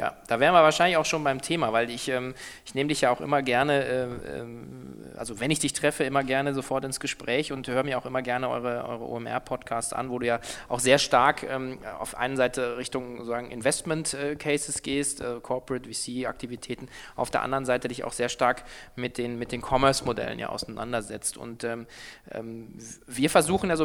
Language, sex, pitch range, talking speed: German, male, 120-140 Hz, 175 wpm